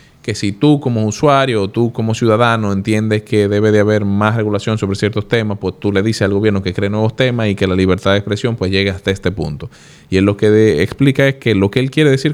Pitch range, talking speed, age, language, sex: 95-120 Hz, 255 wpm, 20-39, Spanish, male